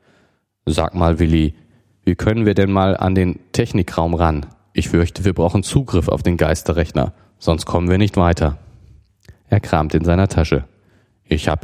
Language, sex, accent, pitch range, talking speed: German, male, German, 80-100 Hz, 165 wpm